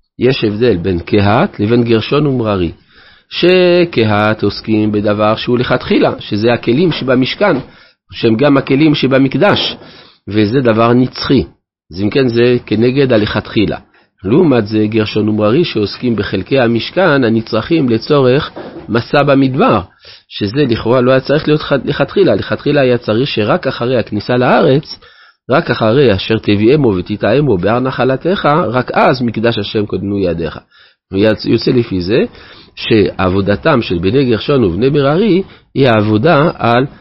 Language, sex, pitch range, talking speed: Hebrew, male, 105-140 Hz, 130 wpm